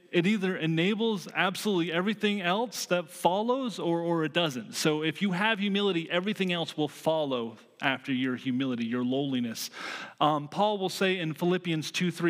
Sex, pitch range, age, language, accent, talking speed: male, 145-185 Hz, 30-49, English, American, 160 wpm